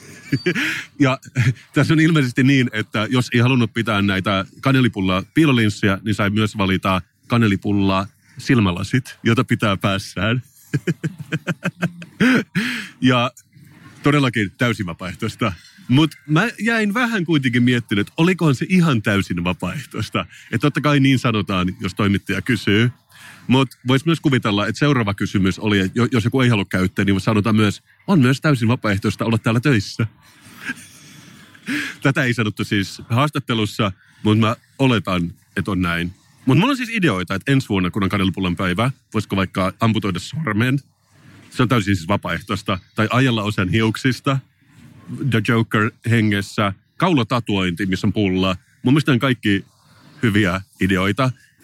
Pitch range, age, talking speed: 100-135 Hz, 30-49, 135 wpm